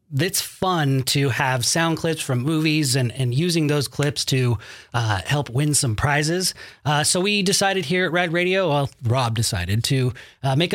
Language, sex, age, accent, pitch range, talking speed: English, male, 30-49, American, 125-160 Hz, 185 wpm